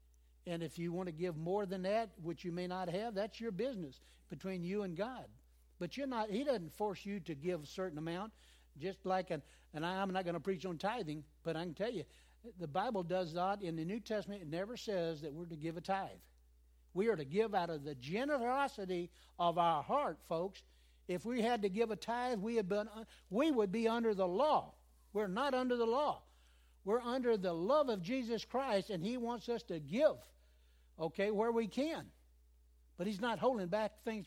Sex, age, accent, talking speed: male, 60-79, American, 215 wpm